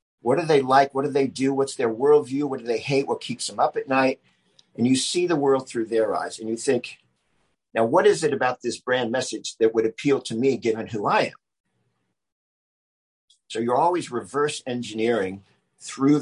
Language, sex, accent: English, male, American